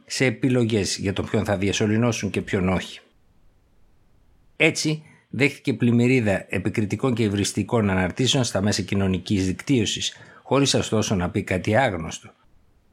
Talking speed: 125 wpm